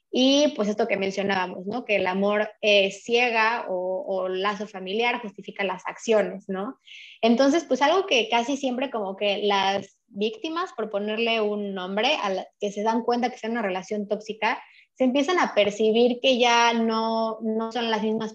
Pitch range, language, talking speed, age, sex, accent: 200-230 Hz, Spanish, 180 wpm, 20-39, female, Mexican